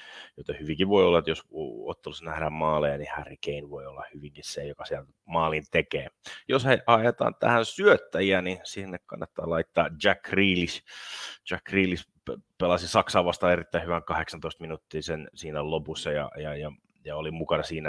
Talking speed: 160 wpm